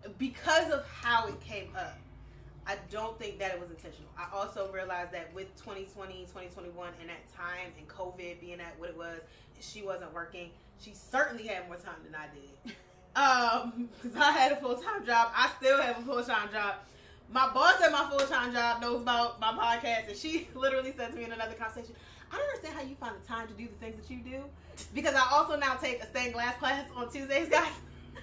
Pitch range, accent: 180-245 Hz, American